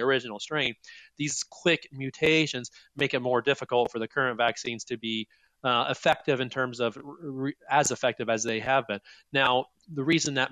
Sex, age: male, 30-49